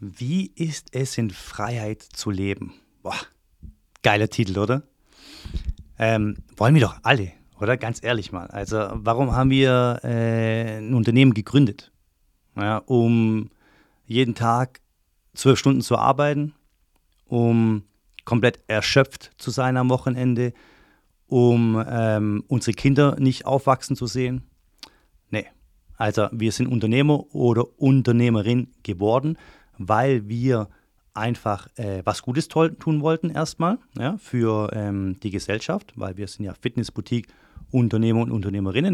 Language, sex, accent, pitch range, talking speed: German, male, German, 105-130 Hz, 125 wpm